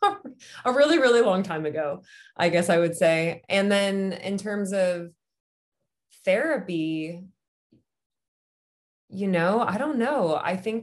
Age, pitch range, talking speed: 20-39, 160-195 Hz, 135 wpm